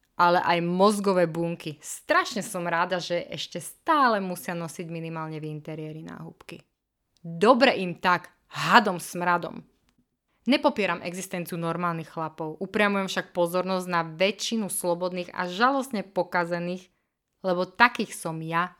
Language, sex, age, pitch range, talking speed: Slovak, female, 20-39, 175-235 Hz, 120 wpm